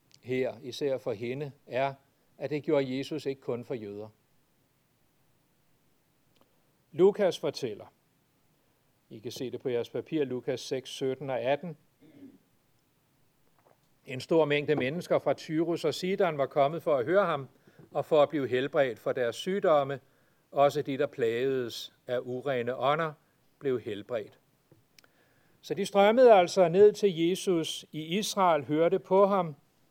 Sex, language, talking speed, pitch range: male, Danish, 140 wpm, 130-175 Hz